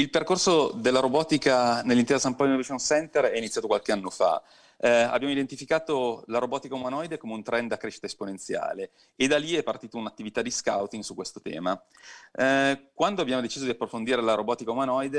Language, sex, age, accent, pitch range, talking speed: Italian, male, 40-59, native, 110-140 Hz, 180 wpm